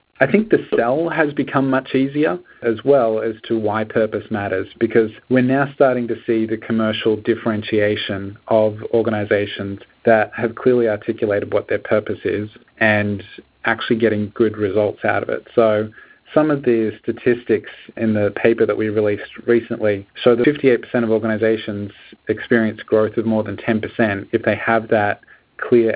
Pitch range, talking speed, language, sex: 105-120 Hz, 160 wpm, English, male